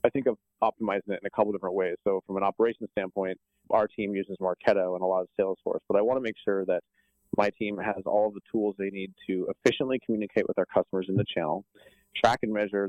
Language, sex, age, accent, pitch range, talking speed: English, male, 30-49, American, 90-105 Hz, 240 wpm